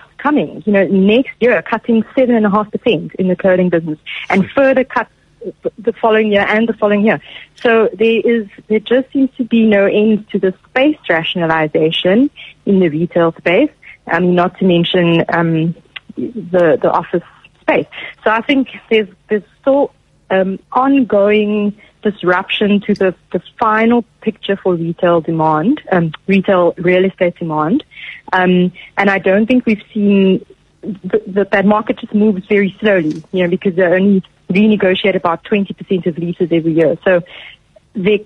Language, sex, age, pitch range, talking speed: English, female, 30-49, 180-220 Hz, 165 wpm